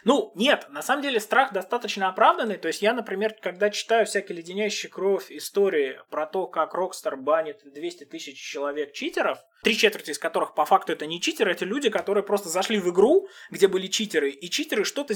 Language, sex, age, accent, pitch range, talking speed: Russian, male, 20-39, native, 170-260 Hz, 195 wpm